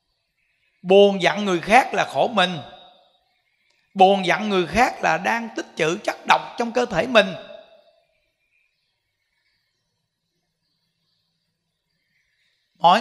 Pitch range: 165-230 Hz